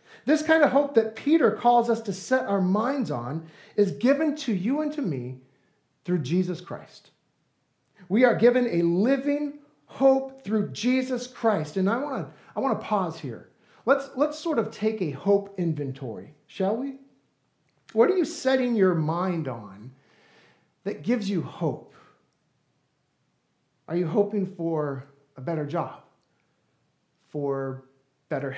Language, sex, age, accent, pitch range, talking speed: English, male, 40-59, American, 160-230 Hz, 145 wpm